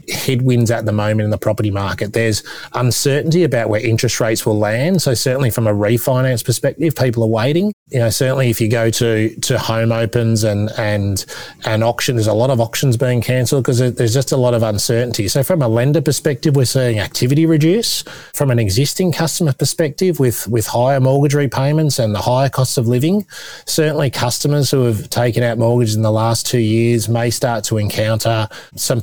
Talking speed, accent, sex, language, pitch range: 195 wpm, Australian, male, English, 110-130 Hz